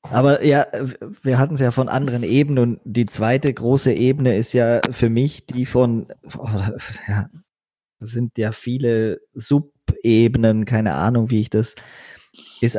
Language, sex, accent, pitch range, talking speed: German, male, German, 110-135 Hz, 155 wpm